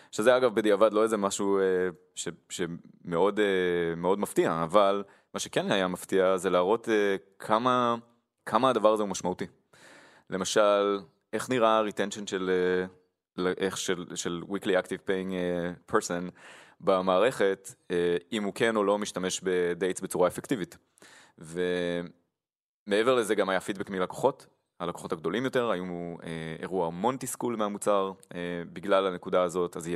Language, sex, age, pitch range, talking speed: Hebrew, male, 20-39, 90-110 Hz, 135 wpm